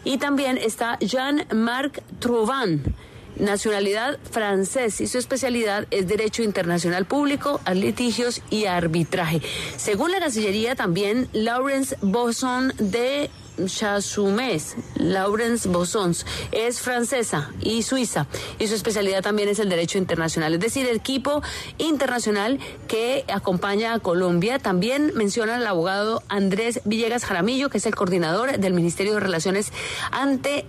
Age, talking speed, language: 40-59, 125 wpm, Spanish